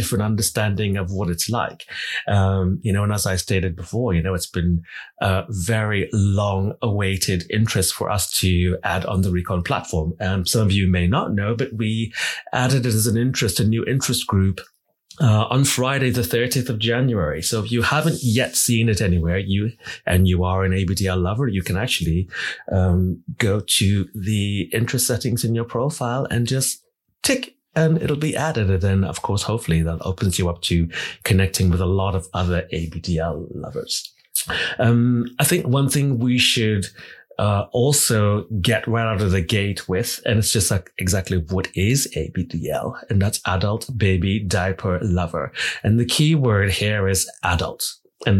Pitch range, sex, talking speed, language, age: 95-120 Hz, male, 180 wpm, English, 30-49